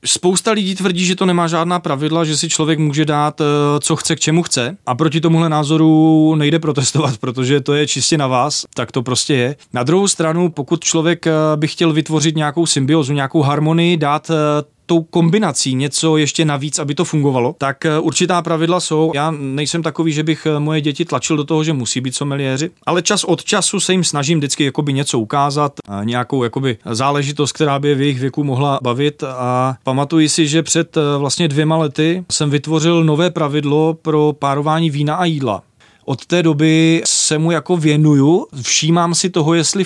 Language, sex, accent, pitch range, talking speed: Czech, male, native, 135-160 Hz, 185 wpm